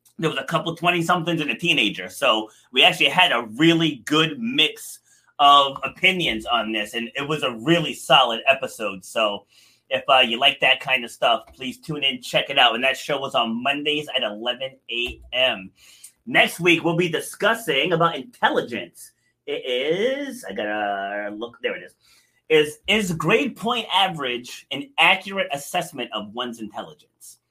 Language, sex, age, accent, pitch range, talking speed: English, male, 30-49, American, 120-165 Hz, 170 wpm